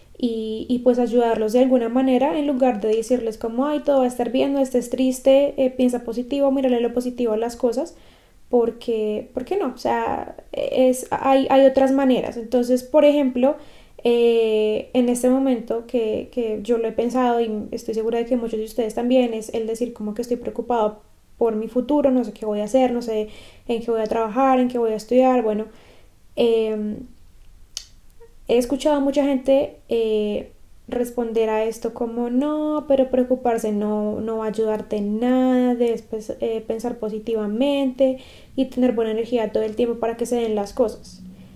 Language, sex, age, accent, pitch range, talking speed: Spanish, female, 10-29, Colombian, 225-265 Hz, 190 wpm